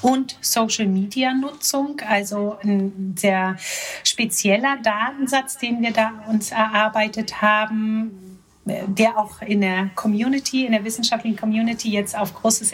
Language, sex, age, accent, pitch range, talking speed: German, female, 30-49, German, 200-245 Hz, 120 wpm